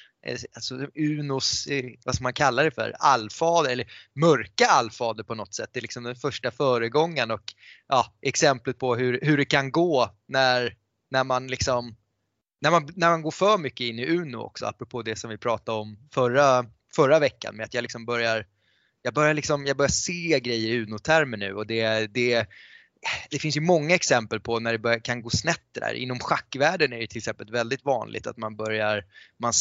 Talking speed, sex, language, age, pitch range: 195 wpm, male, Swedish, 20-39, 110-135 Hz